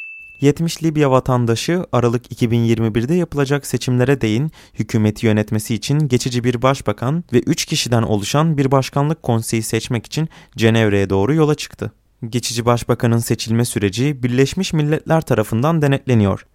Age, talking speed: 30-49, 125 wpm